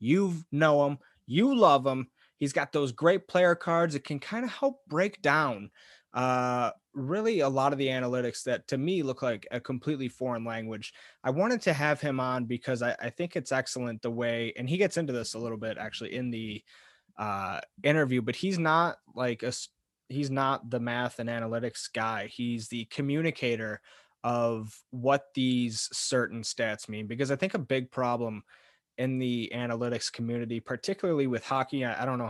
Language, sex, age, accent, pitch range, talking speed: English, male, 20-39, American, 115-155 Hz, 185 wpm